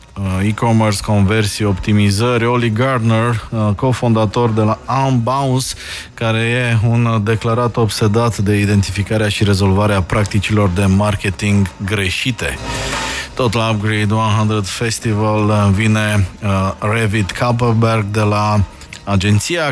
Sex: male